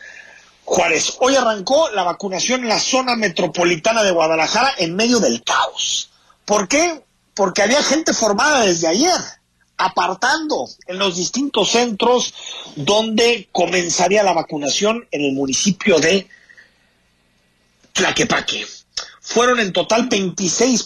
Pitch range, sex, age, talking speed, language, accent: 155-225 Hz, male, 40-59, 120 wpm, Spanish, Mexican